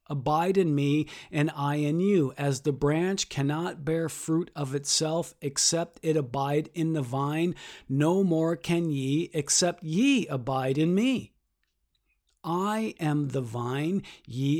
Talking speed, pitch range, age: 145 wpm, 130-165 Hz, 40-59